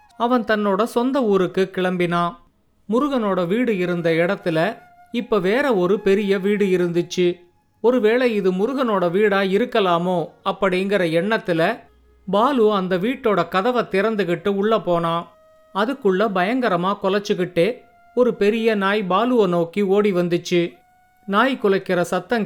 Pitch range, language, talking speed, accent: 180-220 Hz, Tamil, 110 wpm, native